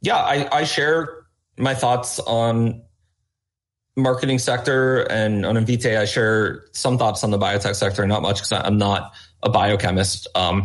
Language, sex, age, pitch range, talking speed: English, male, 30-49, 105-130 Hz, 160 wpm